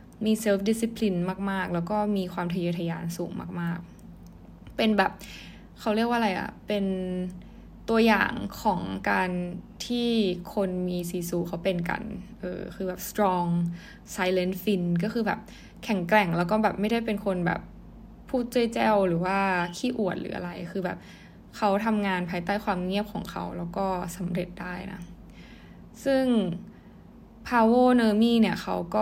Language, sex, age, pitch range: Thai, female, 20-39, 180-215 Hz